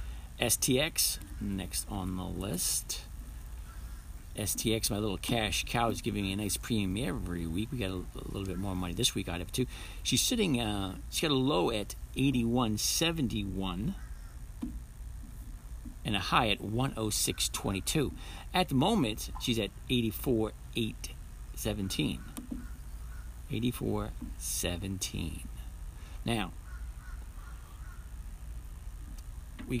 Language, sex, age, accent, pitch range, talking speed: English, male, 50-69, American, 75-110 Hz, 135 wpm